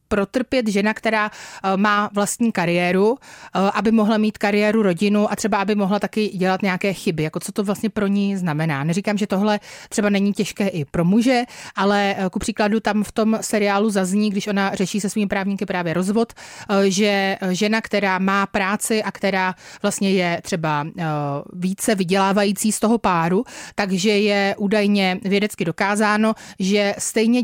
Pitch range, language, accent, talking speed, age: 185-215 Hz, Czech, native, 160 wpm, 30-49